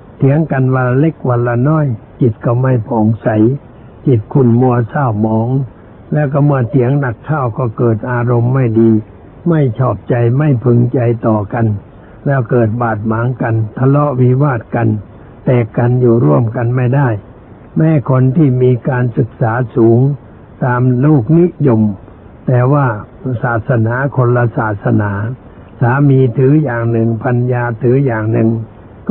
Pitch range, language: 115-135 Hz, Thai